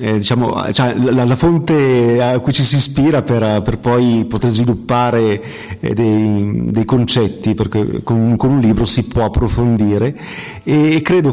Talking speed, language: 165 wpm, Italian